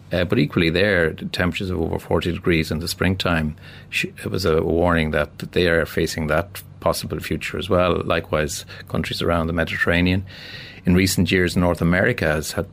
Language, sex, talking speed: English, male, 175 wpm